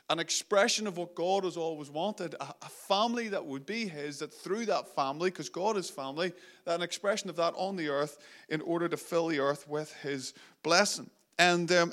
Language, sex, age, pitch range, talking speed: English, male, 30-49, 155-200 Hz, 205 wpm